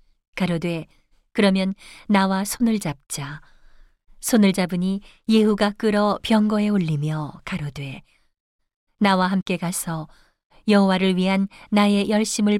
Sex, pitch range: female, 170-210 Hz